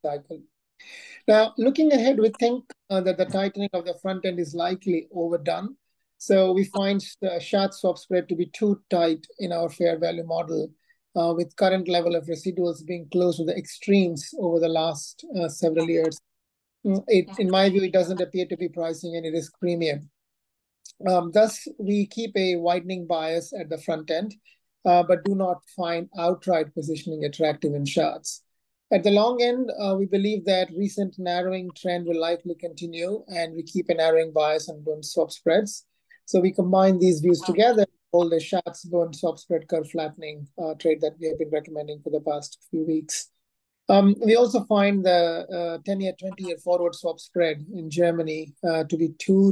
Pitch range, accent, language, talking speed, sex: 165-195 Hz, Indian, English, 180 wpm, male